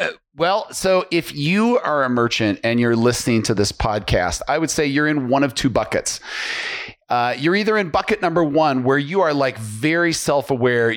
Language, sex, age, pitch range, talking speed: English, male, 40-59, 125-165 Hz, 190 wpm